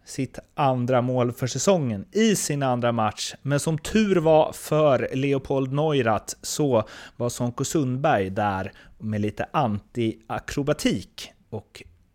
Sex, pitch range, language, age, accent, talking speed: male, 115-165 Hz, Swedish, 30-49, native, 125 wpm